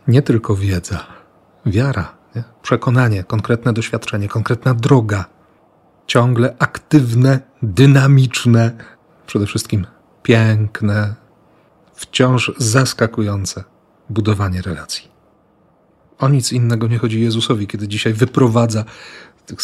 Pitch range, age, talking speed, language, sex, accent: 105-125 Hz, 40-59, 90 wpm, Polish, male, native